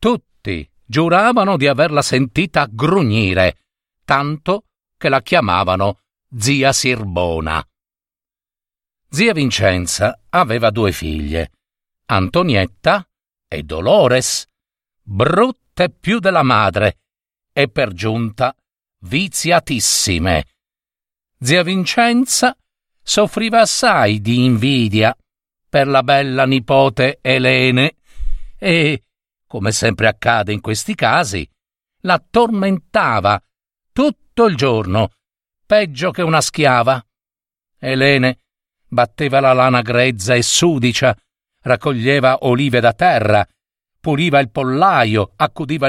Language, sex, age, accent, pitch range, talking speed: Italian, male, 50-69, native, 110-160 Hz, 90 wpm